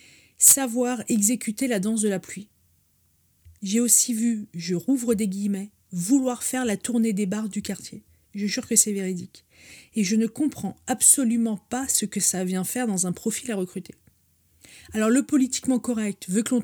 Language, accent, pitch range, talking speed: French, French, 195-235 Hz, 180 wpm